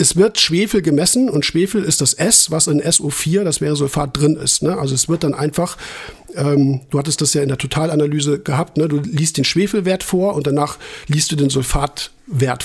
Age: 50-69